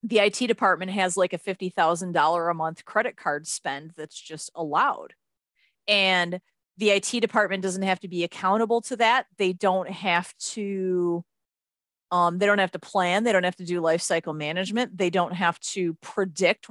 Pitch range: 180-230 Hz